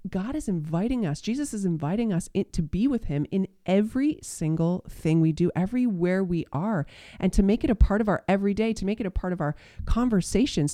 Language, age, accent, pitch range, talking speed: English, 30-49, American, 175-230 Hz, 210 wpm